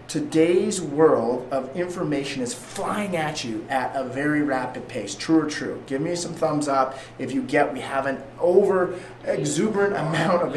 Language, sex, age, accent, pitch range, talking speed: English, male, 30-49, American, 135-175 Hz, 175 wpm